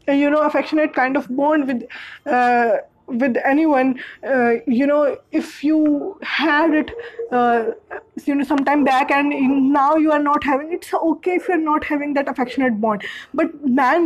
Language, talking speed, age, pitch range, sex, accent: English, 165 wpm, 20-39, 260-305 Hz, female, Indian